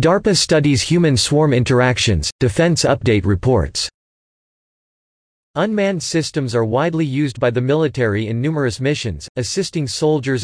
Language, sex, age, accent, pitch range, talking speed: Hebrew, male, 40-59, American, 115-150 Hz, 120 wpm